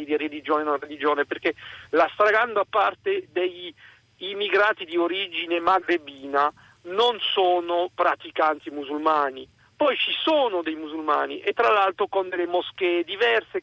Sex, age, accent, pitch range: male, 50-69, native, 170-240 Hz